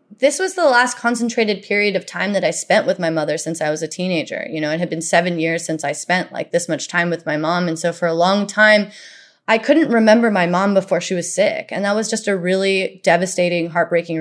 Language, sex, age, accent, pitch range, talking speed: English, female, 20-39, American, 165-205 Hz, 250 wpm